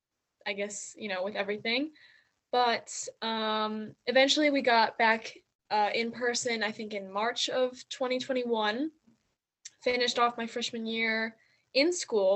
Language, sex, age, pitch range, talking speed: English, female, 10-29, 205-255 Hz, 135 wpm